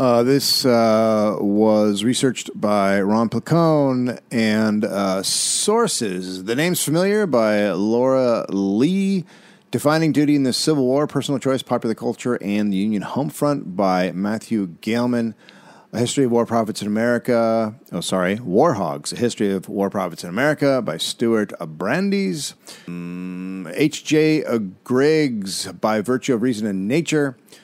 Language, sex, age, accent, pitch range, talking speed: English, male, 40-59, American, 95-135 Hz, 140 wpm